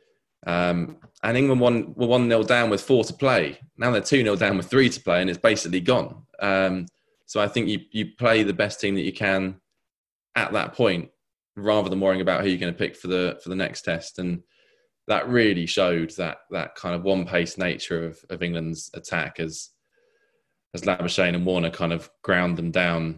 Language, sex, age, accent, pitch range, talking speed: English, male, 20-39, British, 85-105 Hz, 210 wpm